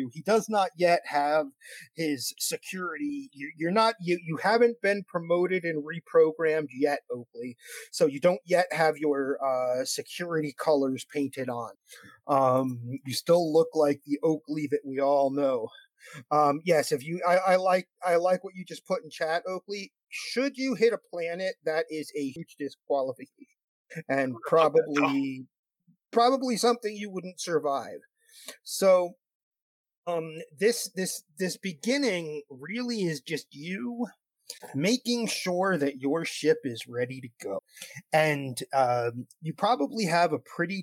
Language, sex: English, male